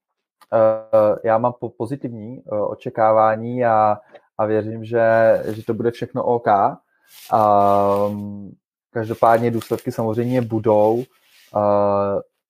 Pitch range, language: 110-135 Hz, Czech